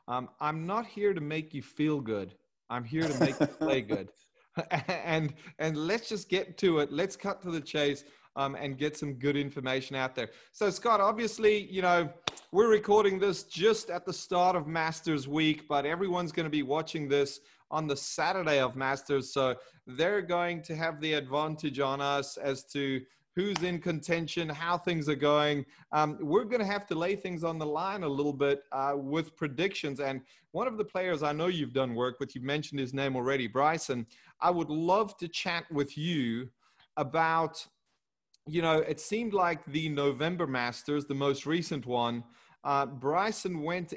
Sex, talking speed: male, 190 wpm